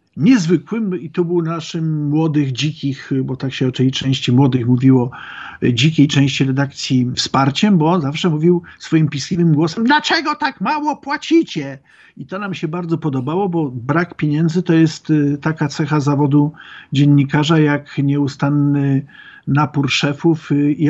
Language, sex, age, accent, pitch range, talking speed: Polish, male, 50-69, native, 135-165 Hz, 140 wpm